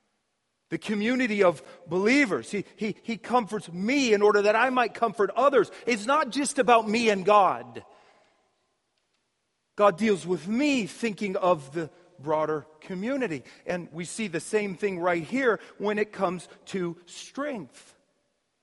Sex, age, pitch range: male, 40-59, 195-265 Hz